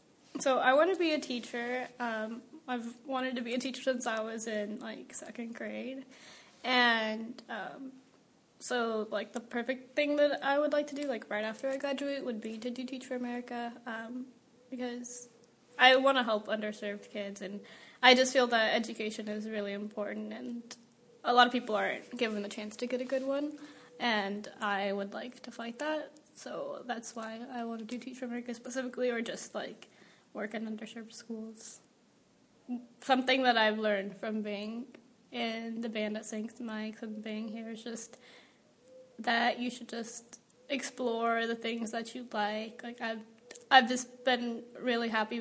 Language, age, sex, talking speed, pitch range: English, 10-29, female, 180 wpm, 220-255 Hz